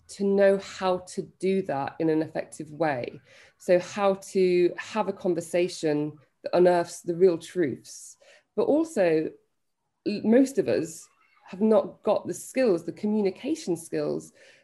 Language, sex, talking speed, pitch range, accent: English, female, 140 wpm, 175-220 Hz, British